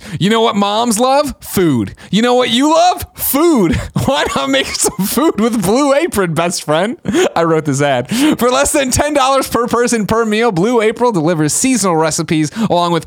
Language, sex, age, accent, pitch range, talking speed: English, male, 30-49, American, 165-240 Hz, 190 wpm